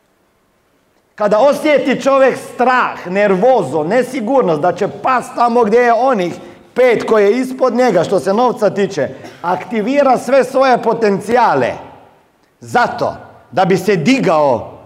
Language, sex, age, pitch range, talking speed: Croatian, male, 40-59, 175-240 Hz, 125 wpm